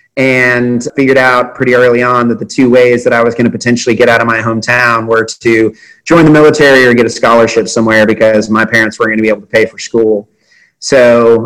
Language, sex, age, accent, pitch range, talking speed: English, male, 30-49, American, 115-130 Hz, 230 wpm